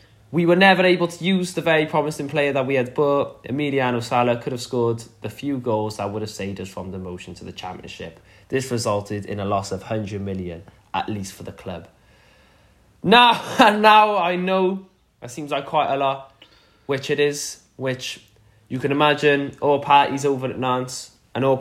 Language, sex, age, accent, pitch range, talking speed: English, male, 10-29, British, 110-155 Hz, 195 wpm